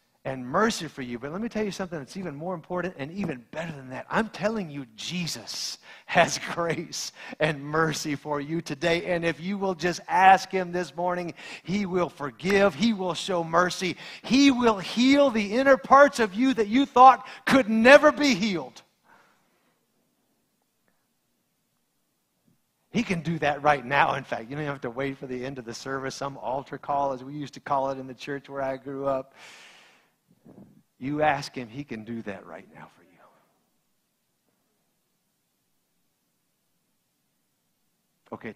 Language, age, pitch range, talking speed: English, 40-59, 140-210 Hz, 170 wpm